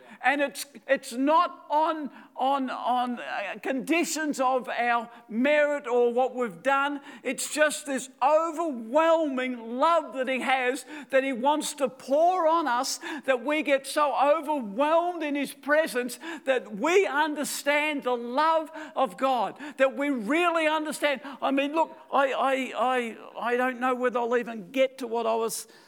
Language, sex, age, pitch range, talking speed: English, male, 50-69, 235-285 Hz, 155 wpm